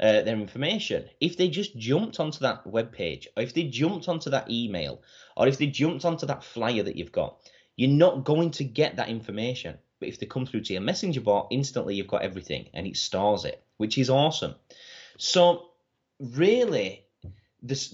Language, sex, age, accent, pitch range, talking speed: English, male, 20-39, British, 110-160 Hz, 195 wpm